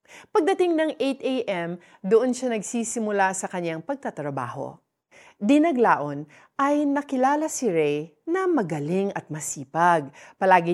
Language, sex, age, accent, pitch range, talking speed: Filipino, female, 40-59, native, 155-235 Hz, 105 wpm